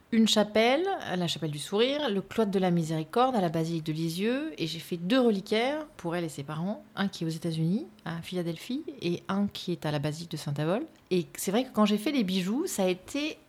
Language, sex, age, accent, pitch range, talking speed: French, female, 30-49, French, 155-200 Hz, 245 wpm